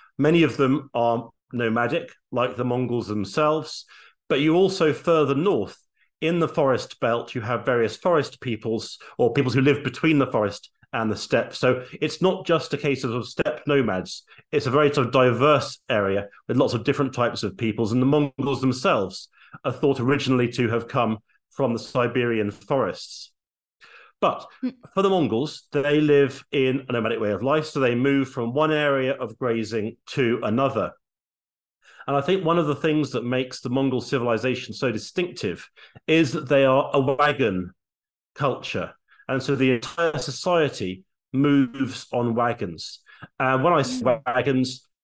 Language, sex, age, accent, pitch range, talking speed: English, male, 40-59, British, 115-145 Hz, 170 wpm